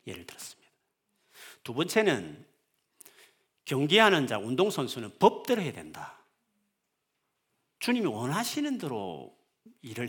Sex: male